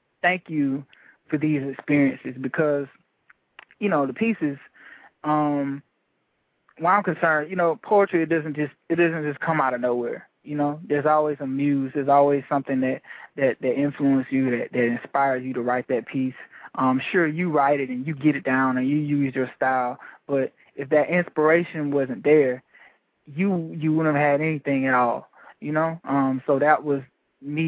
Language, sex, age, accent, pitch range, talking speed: English, male, 20-39, American, 135-165 Hz, 185 wpm